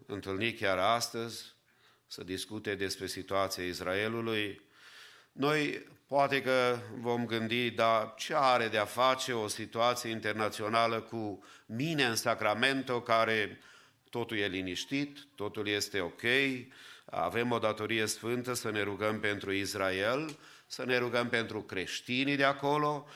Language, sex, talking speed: English, male, 125 wpm